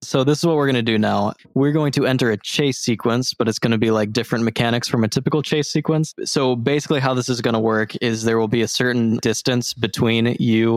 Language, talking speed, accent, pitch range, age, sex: English, 255 wpm, American, 110-130 Hz, 20-39, male